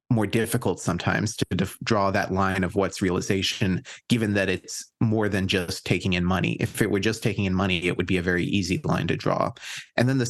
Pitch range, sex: 95-115 Hz, male